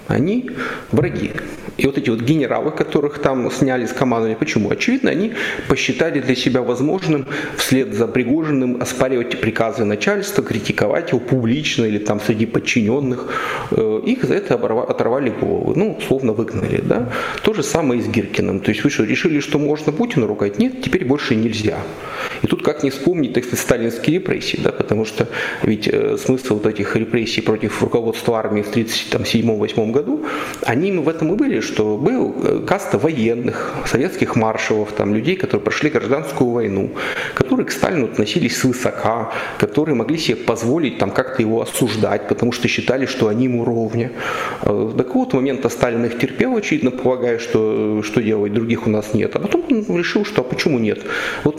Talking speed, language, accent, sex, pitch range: 170 wpm, Russian, native, male, 115-155 Hz